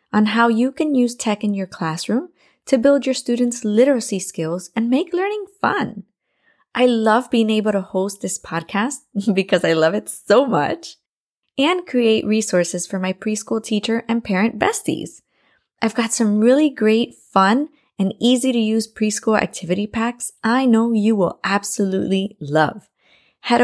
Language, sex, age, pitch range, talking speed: English, female, 20-39, 200-255 Hz, 160 wpm